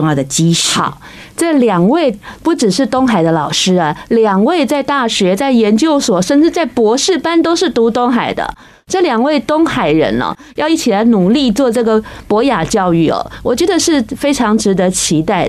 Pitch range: 185-260 Hz